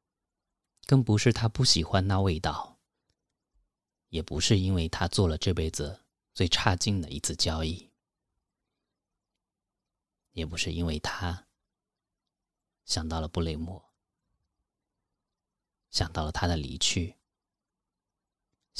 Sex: male